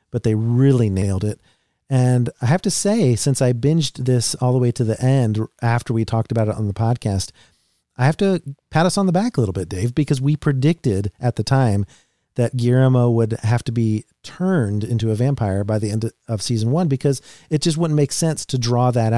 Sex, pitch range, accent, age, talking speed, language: male, 105-125 Hz, American, 40-59, 220 wpm, English